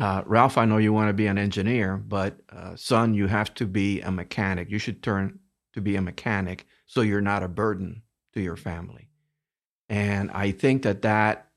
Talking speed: 200 wpm